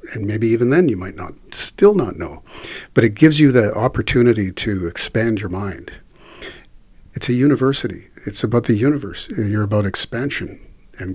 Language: English